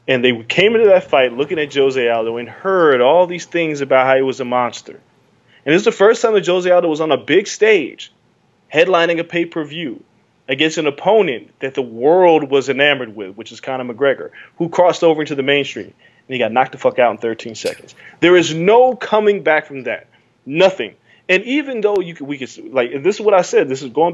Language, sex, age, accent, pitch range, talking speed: English, male, 20-39, American, 140-215 Hz, 225 wpm